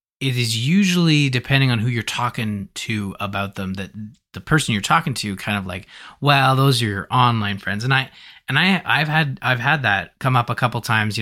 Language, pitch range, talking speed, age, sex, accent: English, 100-125 Hz, 220 wpm, 20-39, male, American